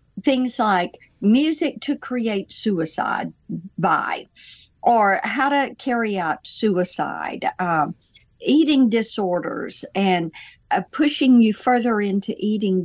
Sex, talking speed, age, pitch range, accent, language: female, 105 wpm, 60-79, 185-245 Hz, American, English